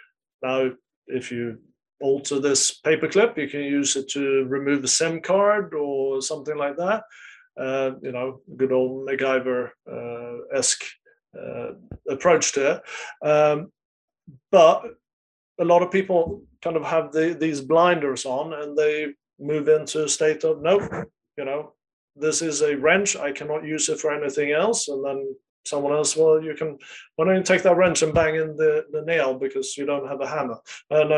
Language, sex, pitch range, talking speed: English, male, 135-165 Hz, 175 wpm